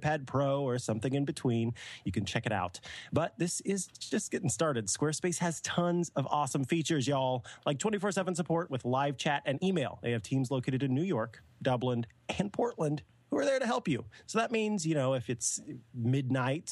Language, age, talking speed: English, 30-49, 200 wpm